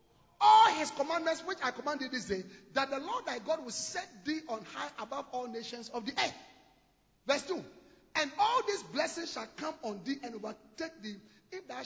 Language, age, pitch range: English, 40-59, 230-335 Hz